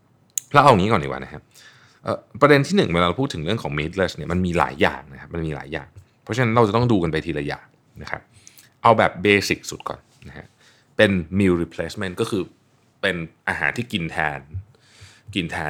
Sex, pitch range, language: male, 85-115 Hz, Thai